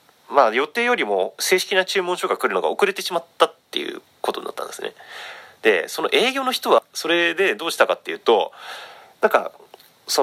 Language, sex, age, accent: Japanese, male, 30-49, native